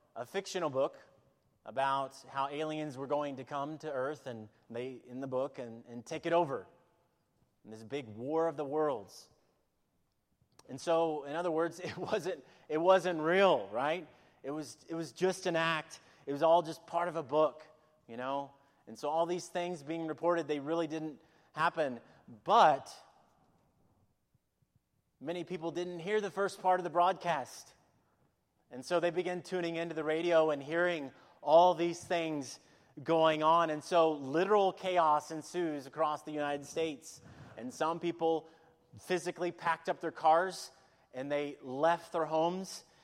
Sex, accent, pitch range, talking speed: male, American, 135-170 Hz, 160 wpm